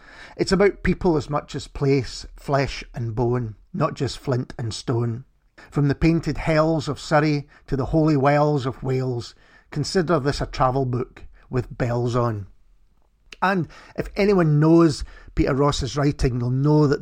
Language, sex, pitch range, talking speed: English, male, 125-150 Hz, 160 wpm